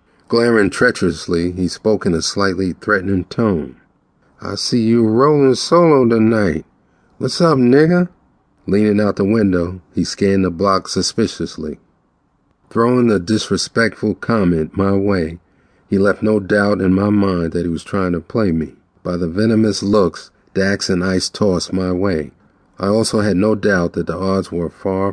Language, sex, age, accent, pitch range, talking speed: English, male, 40-59, American, 90-110 Hz, 160 wpm